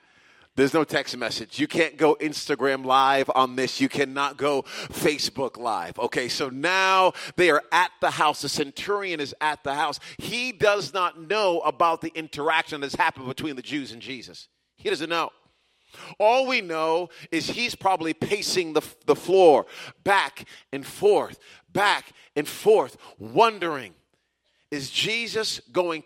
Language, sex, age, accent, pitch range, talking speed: English, male, 40-59, American, 155-200 Hz, 155 wpm